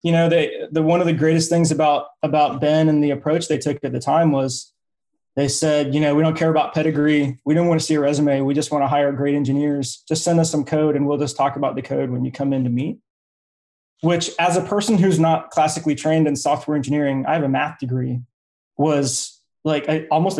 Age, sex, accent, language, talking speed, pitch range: 20-39, male, American, English, 240 wpm, 140-165 Hz